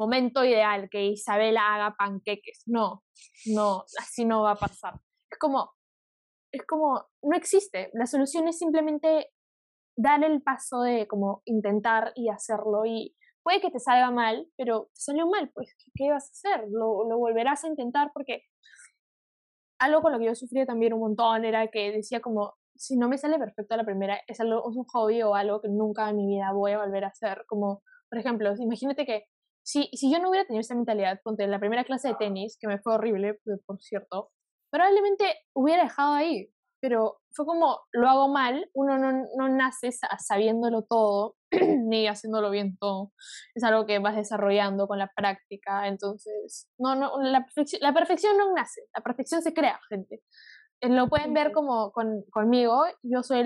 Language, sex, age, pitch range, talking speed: Spanish, female, 10-29, 210-280 Hz, 185 wpm